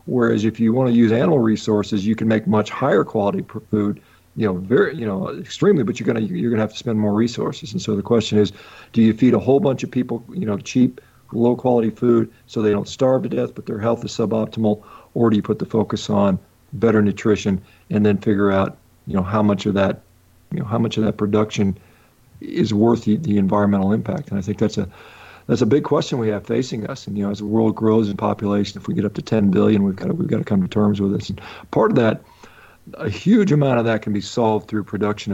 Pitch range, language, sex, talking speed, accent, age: 105-120 Hz, English, male, 250 wpm, American, 50-69